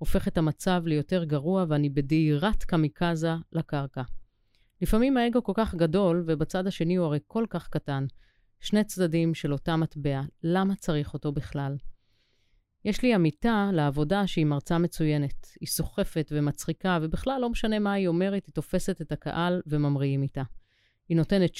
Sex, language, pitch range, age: female, Hebrew, 150-195 Hz, 30-49